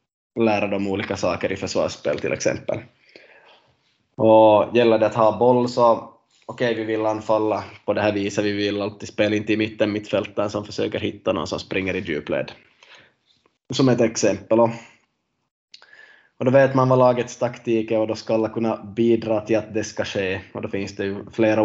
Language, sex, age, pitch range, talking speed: Swedish, male, 20-39, 105-125 Hz, 190 wpm